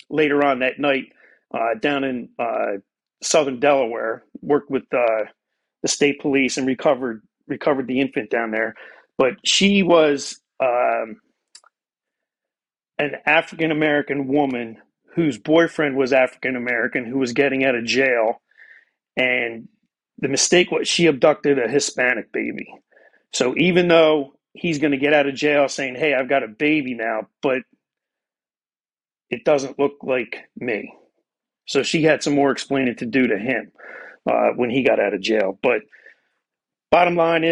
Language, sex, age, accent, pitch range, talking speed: English, male, 40-59, American, 135-155 Hz, 145 wpm